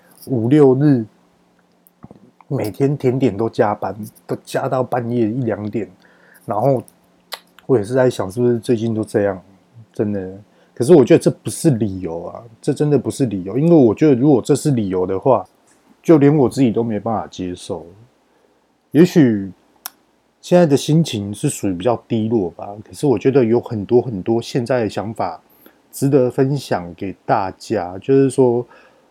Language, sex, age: Chinese, male, 20-39